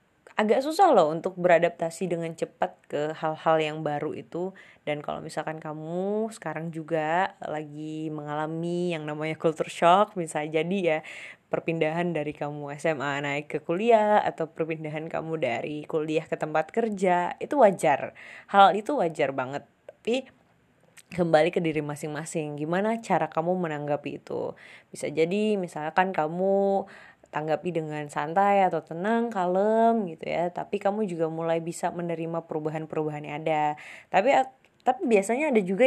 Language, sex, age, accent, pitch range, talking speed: Indonesian, female, 20-39, native, 155-195 Hz, 140 wpm